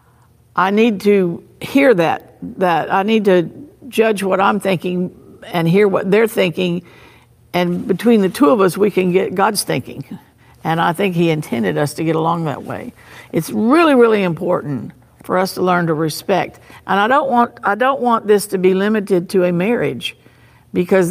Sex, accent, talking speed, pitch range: female, American, 185 wpm, 170-215 Hz